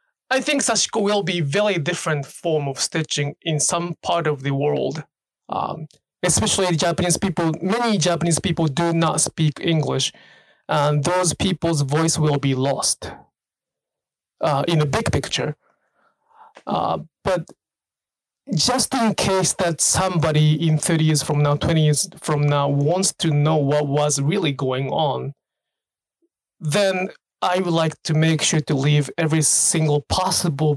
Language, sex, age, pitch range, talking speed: English, male, 20-39, 150-185 Hz, 145 wpm